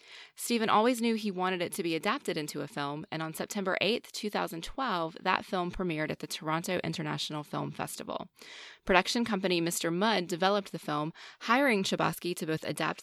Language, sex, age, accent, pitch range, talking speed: English, female, 20-39, American, 160-205 Hz, 175 wpm